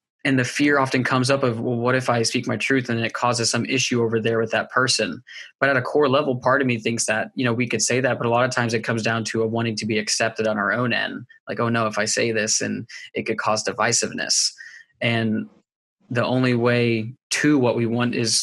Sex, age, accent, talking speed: male, 20-39, American, 255 wpm